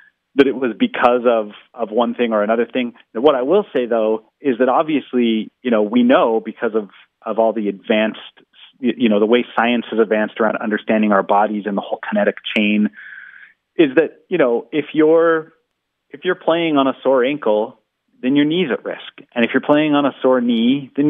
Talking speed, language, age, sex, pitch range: 210 wpm, English, 30-49, male, 110-130 Hz